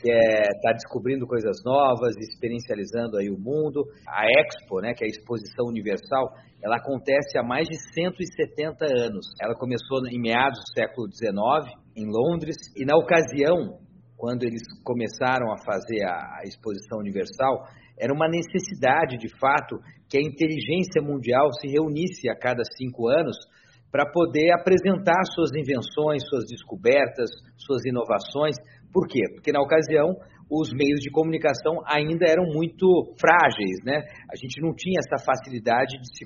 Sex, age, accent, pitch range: male, 50-69, Brazilian, 120-165 Hz